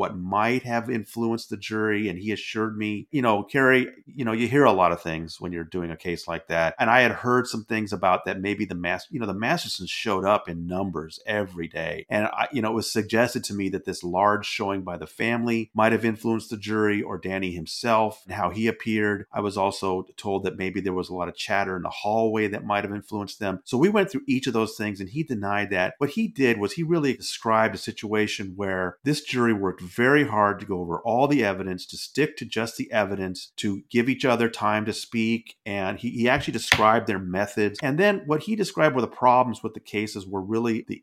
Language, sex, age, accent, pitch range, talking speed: English, male, 40-59, American, 95-120 Hz, 240 wpm